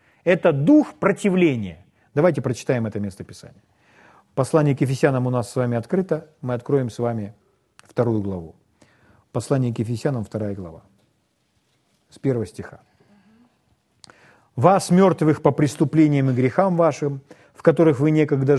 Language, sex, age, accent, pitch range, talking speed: Russian, male, 40-59, native, 130-195 Hz, 130 wpm